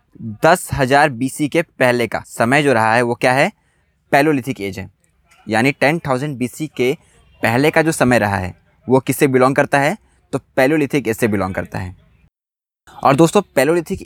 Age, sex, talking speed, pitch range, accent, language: 20-39, male, 170 wpm, 120-155 Hz, native, Hindi